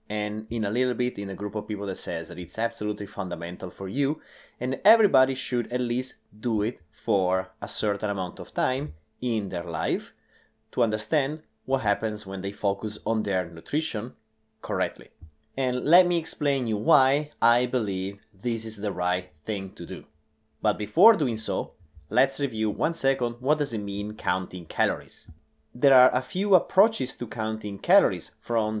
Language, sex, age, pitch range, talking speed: English, male, 30-49, 95-130 Hz, 175 wpm